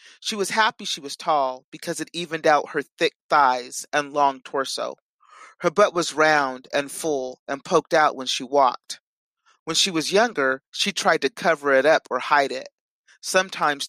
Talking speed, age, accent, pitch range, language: 180 wpm, 30-49, American, 140-185 Hz, English